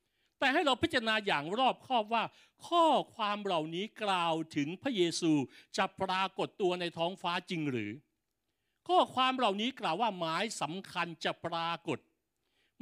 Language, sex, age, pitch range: Thai, male, 60-79, 165-230 Hz